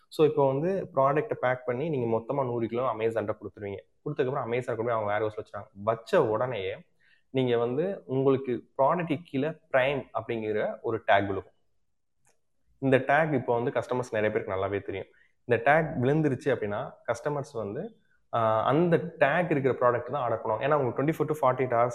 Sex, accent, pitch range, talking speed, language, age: male, native, 110-140 Hz, 160 wpm, Tamil, 20-39